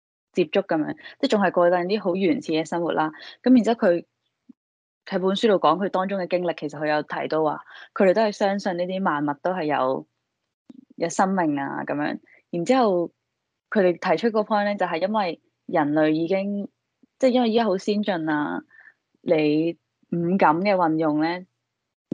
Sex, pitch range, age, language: female, 155-205 Hz, 10-29, Chinese